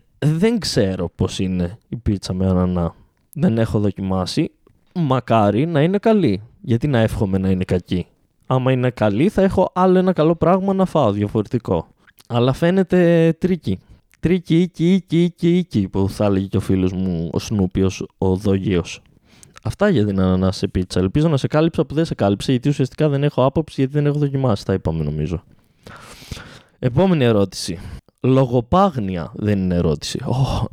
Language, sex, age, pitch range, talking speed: Greek, male, 20-39, 100-165 Hz, 165 wpm